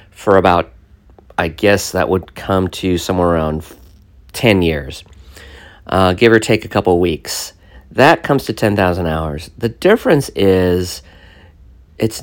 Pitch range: 85-110 Hz